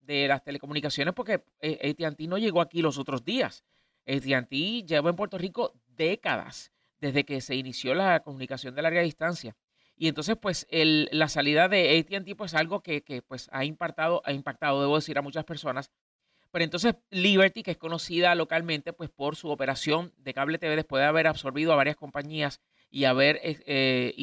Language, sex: Spanish, male